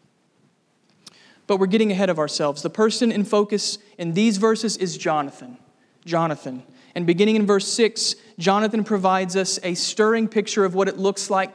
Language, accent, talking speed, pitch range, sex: English, American, 165 wpm, 180-215 Hz, male